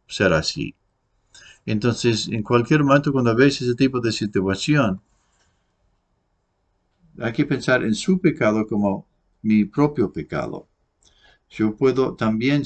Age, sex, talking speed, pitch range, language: 50-69, male, 120 wpm, 100-125 Hz, English